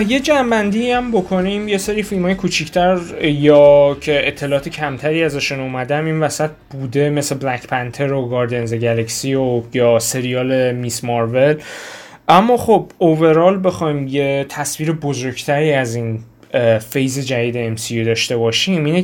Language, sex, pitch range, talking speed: Persian, male, 130-160 Hz, 135 wpm